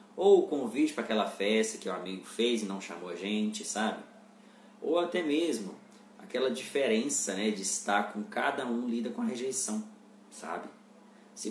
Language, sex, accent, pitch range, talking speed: Portuguese, male, Brazilian, 140-220 Hz, 170 wpm